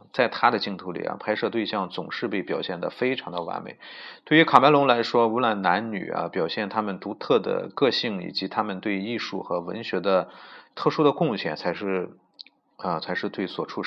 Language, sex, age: Chinese, male, 30-49